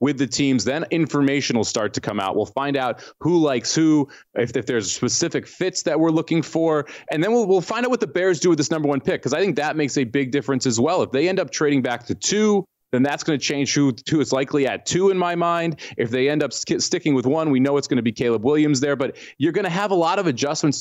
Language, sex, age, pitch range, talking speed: English, male, 30-49, 130-165 Hz, 285 wpm